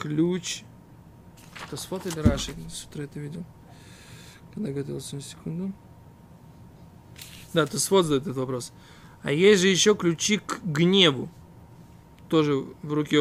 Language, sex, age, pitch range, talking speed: Russian, male, 20-39, 145-190 Hz, 125 wpm